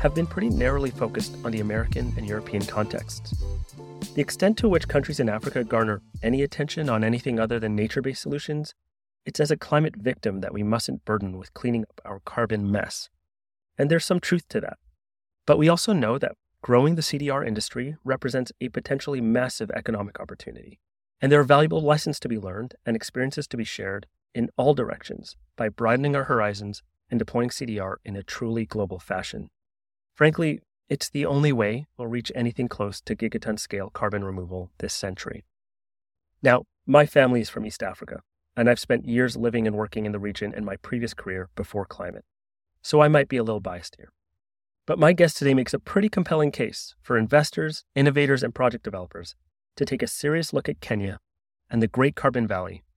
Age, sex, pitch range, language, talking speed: 30-49, male, 100-140 Hz, English, 185 wpm